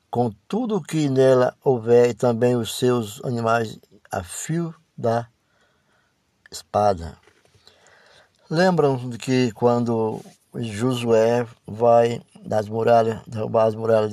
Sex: male